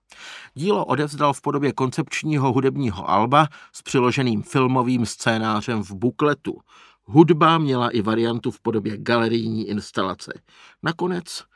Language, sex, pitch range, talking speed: Czech, male, 115-160 Hz, 115 wpm